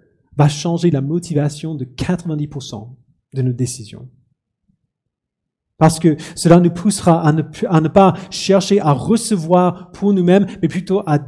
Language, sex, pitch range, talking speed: French, male, 135-170 Hz, 145 wpm